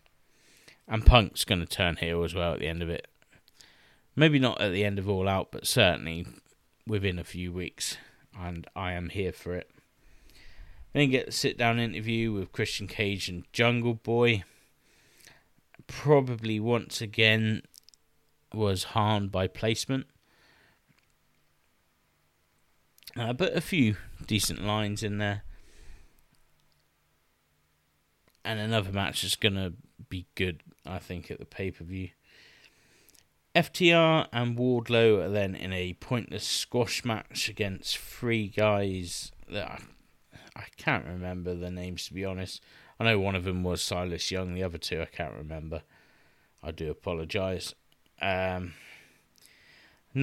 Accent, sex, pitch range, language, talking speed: British, male, 90-110 Hz, English, 135 wpm